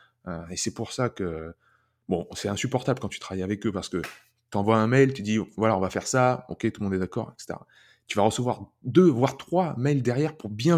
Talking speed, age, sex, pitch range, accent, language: 255 wpm, 20-39, male, 95-135 Hz, French, French